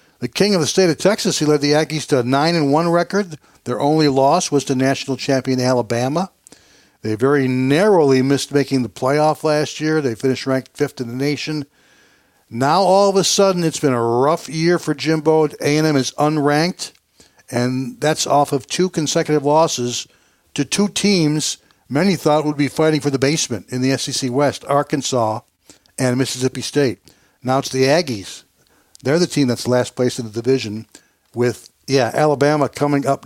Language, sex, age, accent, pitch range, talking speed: English, male, 60-79, American, 130-155 Hz, 175 wpm